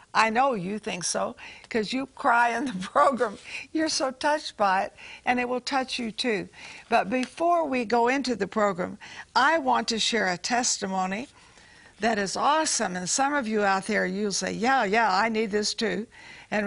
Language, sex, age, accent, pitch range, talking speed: English, female, 60-79, American, 200-260 Hz, 190 wpm